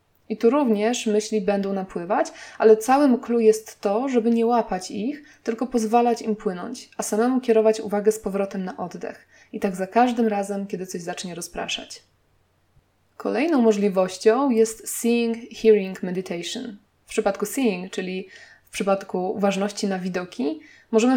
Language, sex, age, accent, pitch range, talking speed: Polish, female, 20-39, native, 195-230 Hz, 145 wpm